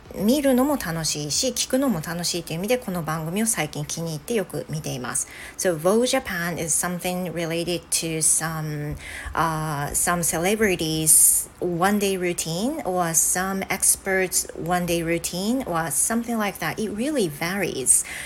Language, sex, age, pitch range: Japanese, female, 40-59, 165-215 Hz